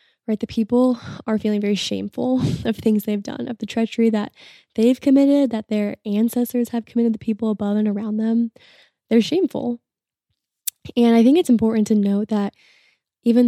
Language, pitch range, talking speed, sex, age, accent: English, 205-235 Hz, 175 wpm, female, 10-29, American